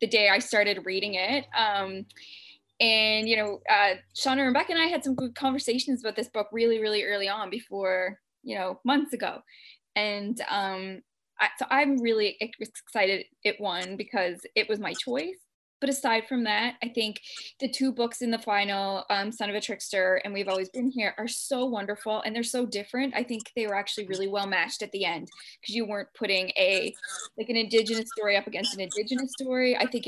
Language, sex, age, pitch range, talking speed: English, female, 10-29, 200-240 Hz, 205 wpm